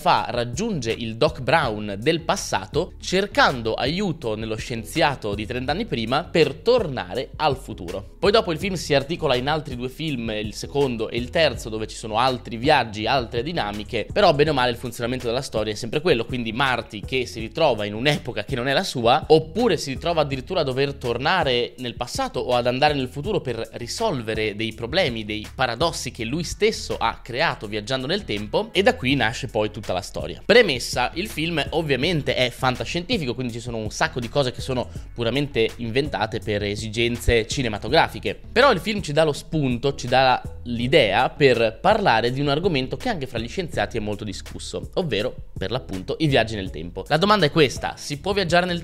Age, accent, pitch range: 20-39, native, 115-160 Hz